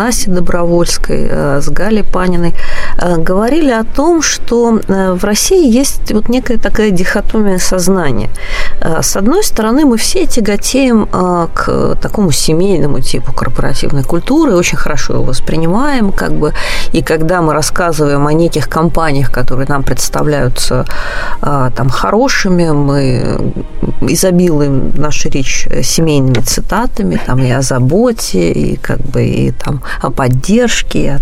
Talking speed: 110 wpm